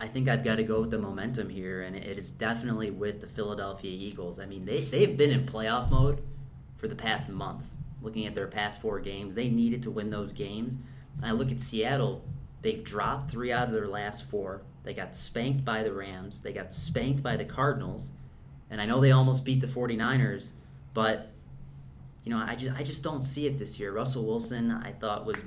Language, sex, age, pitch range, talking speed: English, male, 30-49, 105-130 Hz, 215 wpm